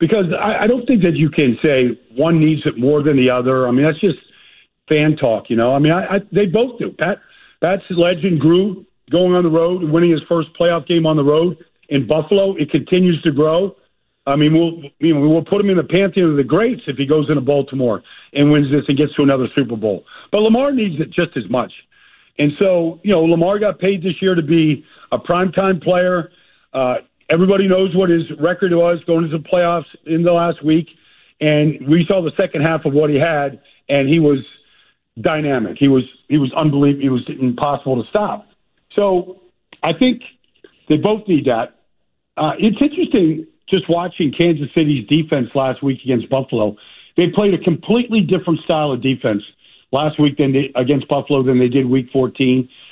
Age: 50-69